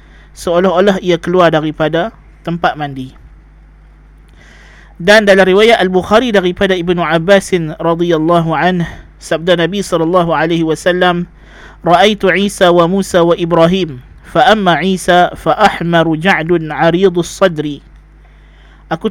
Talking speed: 105 wpm